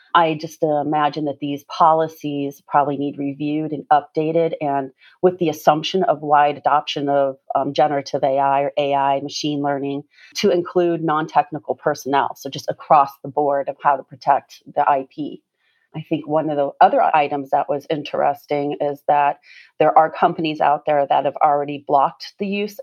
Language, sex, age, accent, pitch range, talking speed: English, female, 30-49, American, 145-160 Hz, 170 wpm